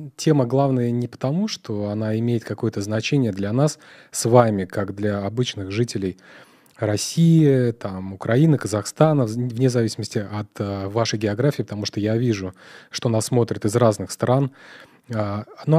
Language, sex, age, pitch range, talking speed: Russian, male, 30-49, 105-130 Hz, 140 wpm